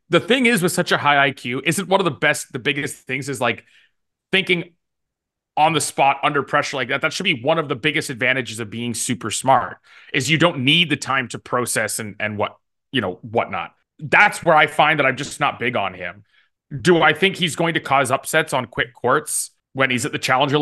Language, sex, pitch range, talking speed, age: English, male, 125-165 Hz, 230 wpm, 20-39